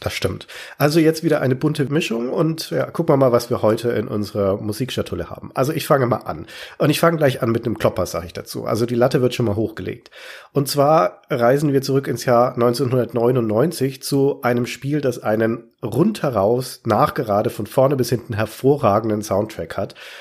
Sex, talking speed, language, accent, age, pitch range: male, 190 wpm, German, German, 40-59, 110-140 Hz